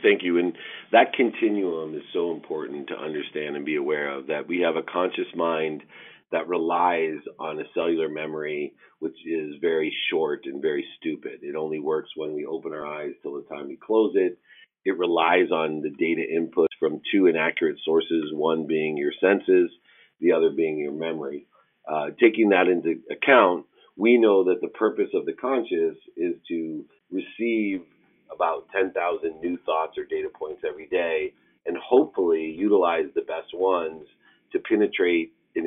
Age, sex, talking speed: 40-59, male, 170 wpm